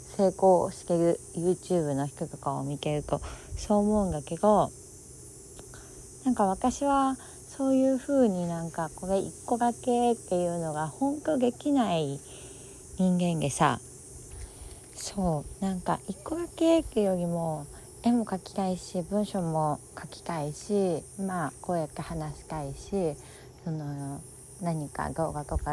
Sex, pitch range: female, 150-210 Hz